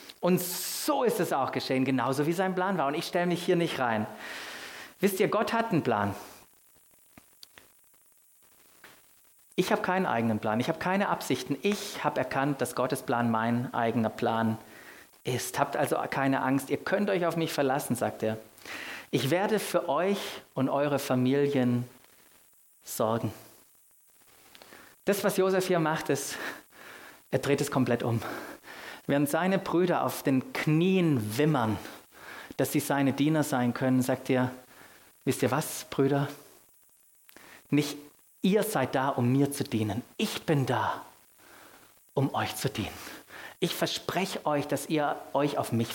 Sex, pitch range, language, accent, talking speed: male, 120-160 Hz, German, German, 150 wpm